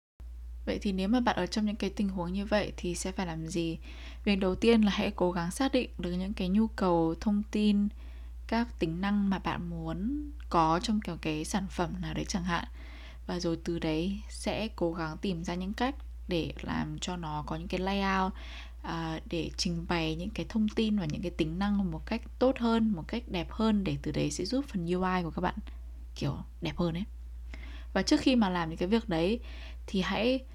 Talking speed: 225 wpm